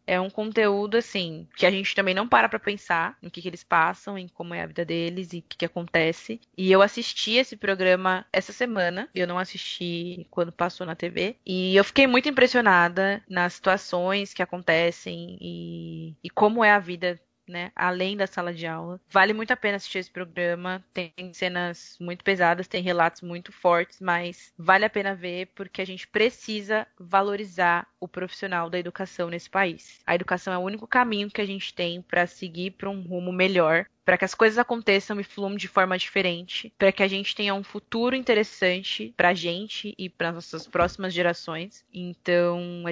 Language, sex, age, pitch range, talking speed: Portuguese, female, 20-39, 175-200 Hz, 195 wpm